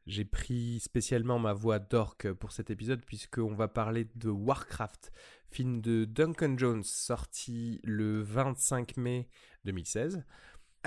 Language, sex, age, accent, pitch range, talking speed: French, male, 20-39, French, 100-125 Hz, 125 wpm